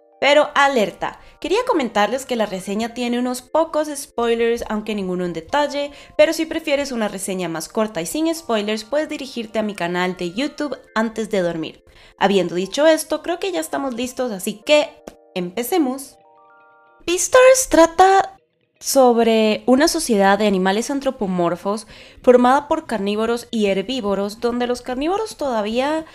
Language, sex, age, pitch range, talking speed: Spanish, female, 20-39, 205-275 Hz, 145 wpm